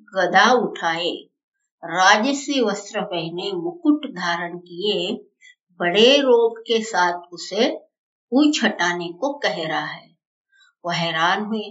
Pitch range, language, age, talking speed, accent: 195-270 Hz, Hindi, 60-79, 100 wpm, native